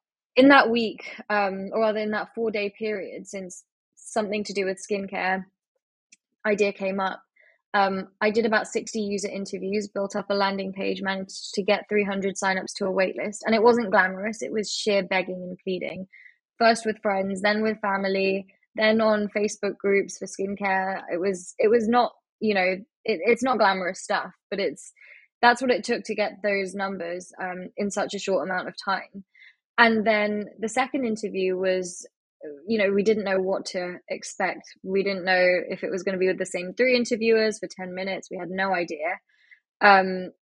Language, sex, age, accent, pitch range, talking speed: English, female, 20-39, British, 190-215 Hz, 190 wpm